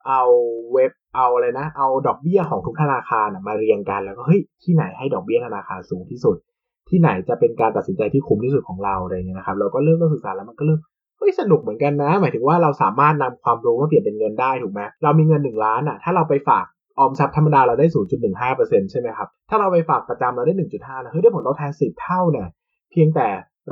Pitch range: 130-195 Hz